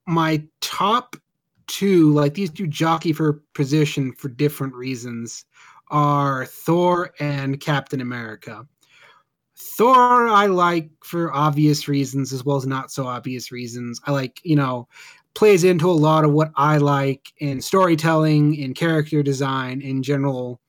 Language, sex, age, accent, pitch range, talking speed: English, male, 20-39, American, 140-170 Hz, 140 wpm